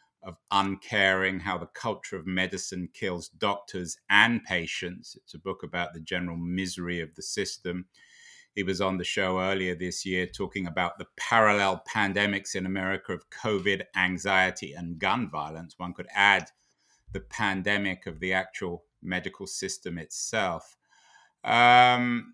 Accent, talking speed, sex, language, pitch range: British, 145 wpm, male, English, 95-115 Hz